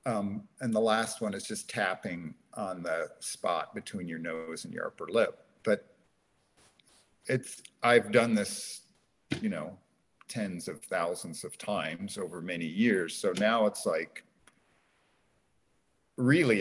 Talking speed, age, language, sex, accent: 135 wpm, 50-69, English, male, American